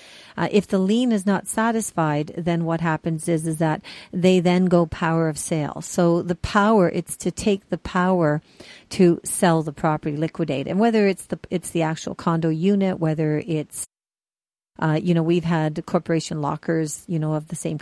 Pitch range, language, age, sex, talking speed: 160-185 Hz, English, 50-69, female, 185 wpm